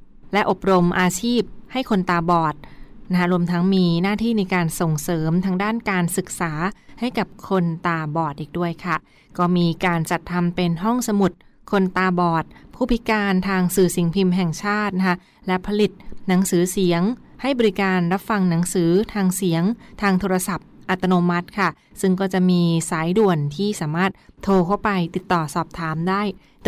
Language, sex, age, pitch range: Thai, female, 20-39, 175-205 Hz